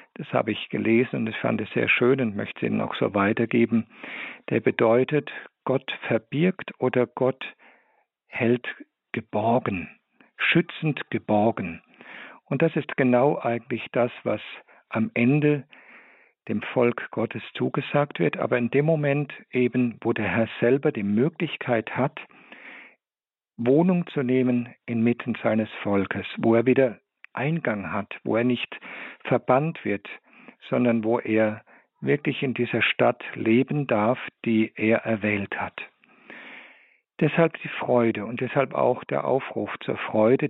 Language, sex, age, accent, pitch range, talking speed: German, male, 50-69, German, 115-145 Hz, 140 wpm